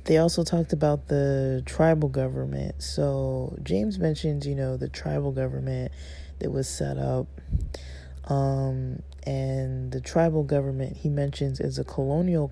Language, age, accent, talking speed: English, 20-39, American, 140 wpm